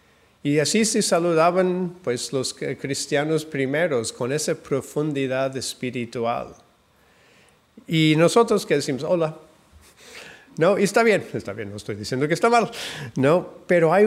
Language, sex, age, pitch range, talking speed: Spanish, male, 50-69, 125-160 Hz, 130 wpm